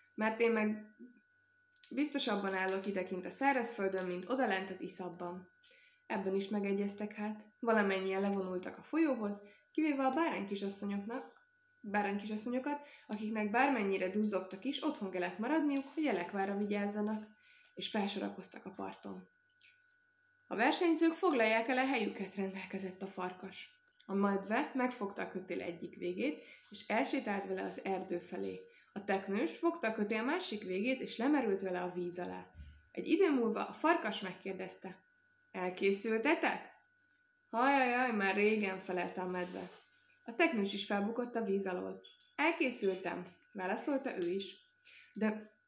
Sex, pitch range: female, 190-280 Hz